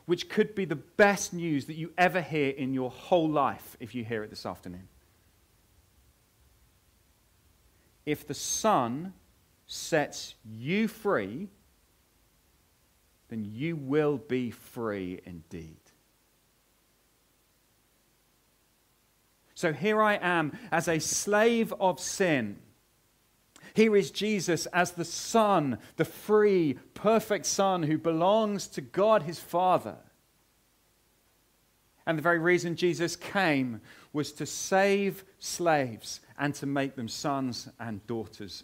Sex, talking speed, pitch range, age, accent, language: male, 115 wpm, 115-190 Hz, 40-59, British, English